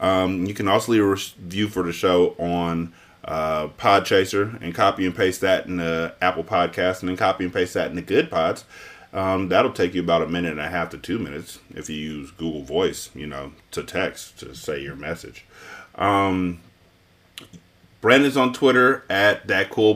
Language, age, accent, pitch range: English, 30-49, American, 85-105 Hz